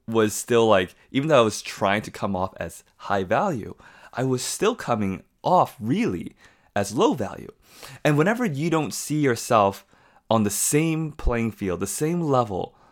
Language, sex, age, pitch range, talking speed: English, male, 20-39, 100-135 Hz, 170 wpm